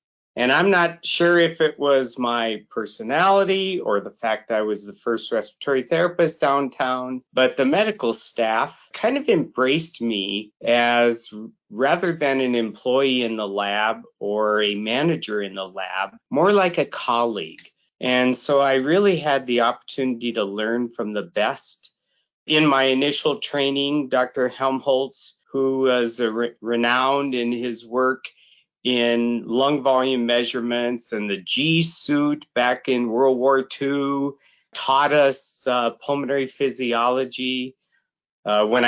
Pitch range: 120-140 Hz